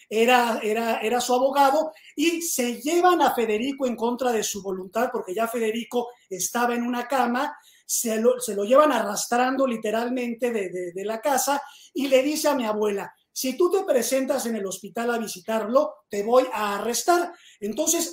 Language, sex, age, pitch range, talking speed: Spanish, male, 30-49, 225-275 Hz, 170 wpm